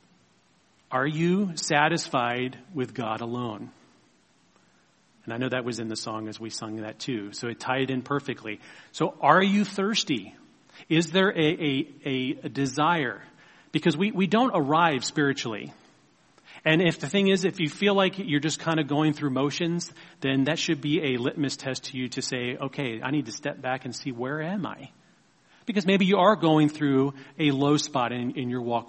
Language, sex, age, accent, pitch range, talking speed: English, male, 40-59, American, 130-165 Hz, 185 wpm